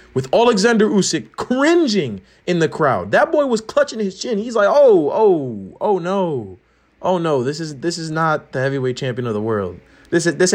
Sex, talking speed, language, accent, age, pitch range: male, 200 wpm, English, American, 30-49, 120-190 Hz